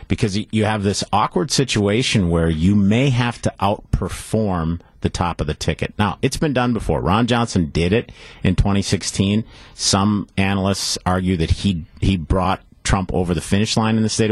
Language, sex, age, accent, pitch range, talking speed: English, male, 50-69, American, 90-110 Hz, 180 wpm